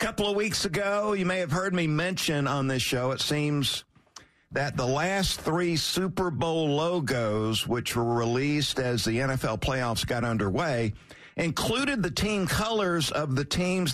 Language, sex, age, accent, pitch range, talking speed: English, male, 50-69, American, 125-180 Hz, 170 wpm